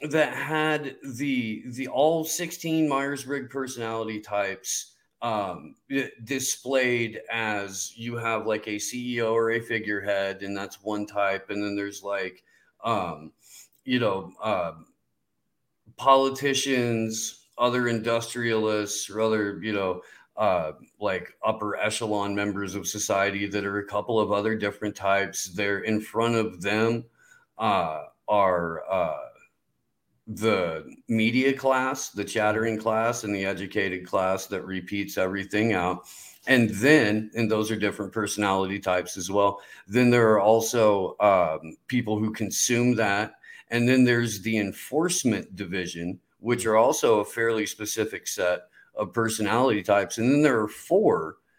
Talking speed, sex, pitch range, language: 135 wpm, male, 100-125 Hz, English